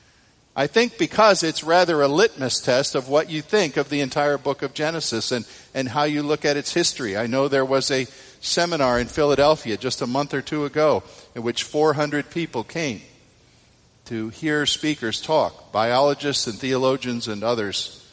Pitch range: 120-150 Hz